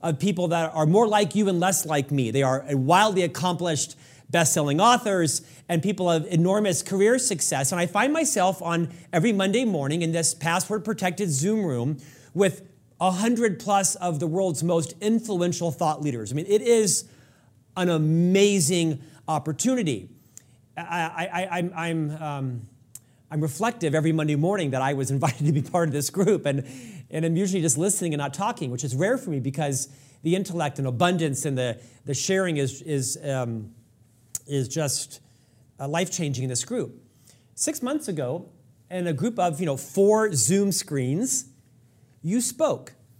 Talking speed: 165 wpm